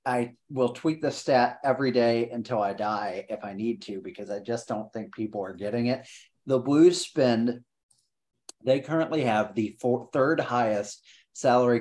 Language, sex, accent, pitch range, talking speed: English, male, American, 115-145 Hz, 170 wpm